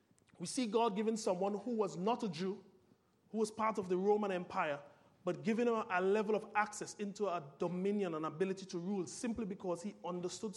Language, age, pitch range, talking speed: English, 30-49, 165-205 Hz, 200 wpm